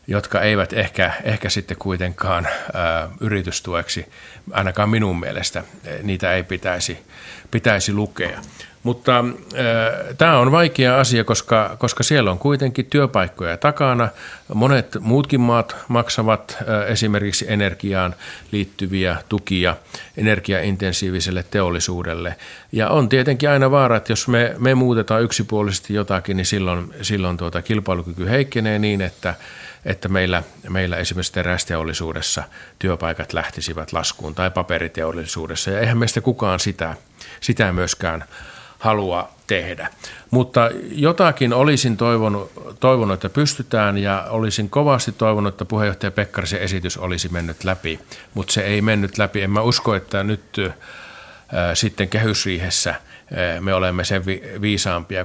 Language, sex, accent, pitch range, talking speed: Finnish, male, native, 90-115 Hz, 120 wpm